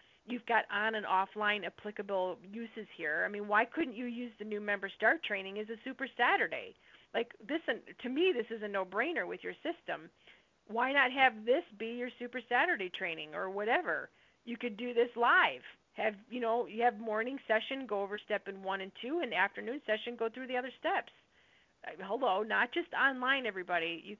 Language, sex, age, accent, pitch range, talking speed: English, female, 40-59, American, 195-245 Hz, 195 wpm